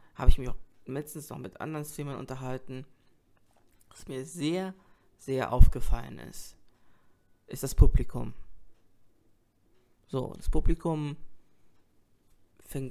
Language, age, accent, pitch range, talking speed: German, 20-39, German, 120-140 Hz, 105 wpm